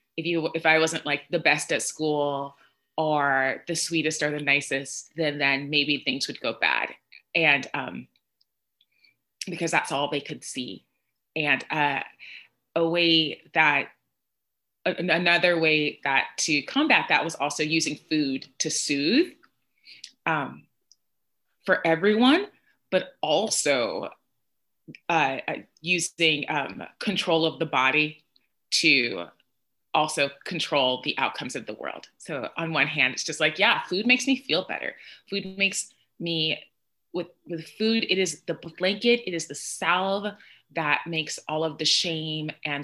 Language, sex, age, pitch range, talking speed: English, female, 20-39, 150-180 Hz, 145 wpm